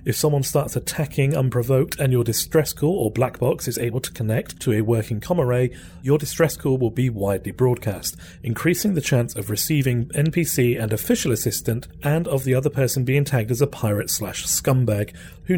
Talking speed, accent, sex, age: 190 wpm, British, male, 40-59